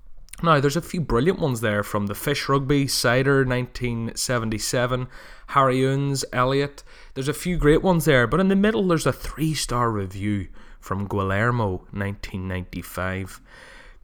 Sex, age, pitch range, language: male, 20-39, 105-145 Hz, English